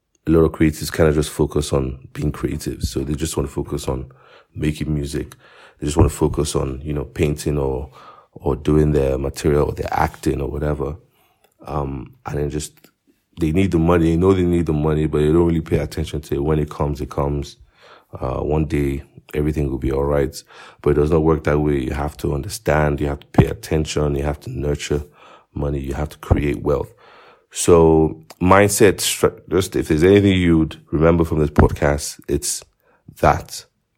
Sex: male